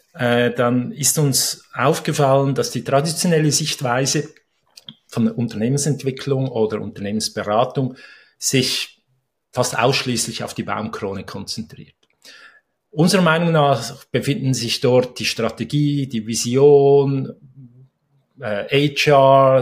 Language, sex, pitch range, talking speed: German, male, 120-145 Hz, 95 wpm